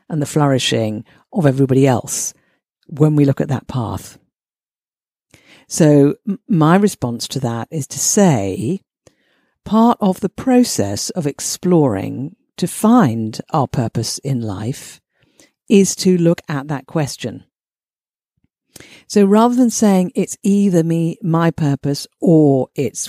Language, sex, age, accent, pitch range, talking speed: English, female, 50-69, British, 135-200 Hz, 125 wpm